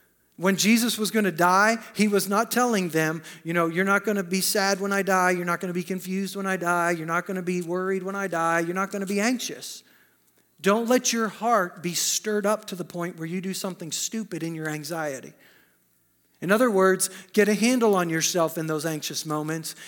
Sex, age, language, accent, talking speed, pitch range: male, 40-59, English, American, 230 wpm, 175-200 Hz